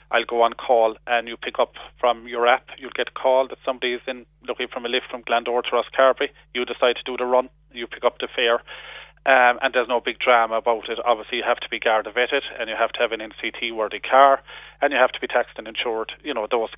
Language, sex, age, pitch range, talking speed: English, male, 30-49, 120-135 Hz, 255 wpm